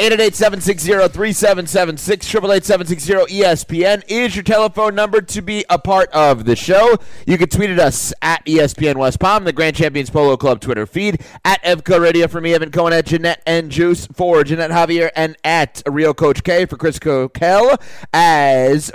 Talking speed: 165 wpm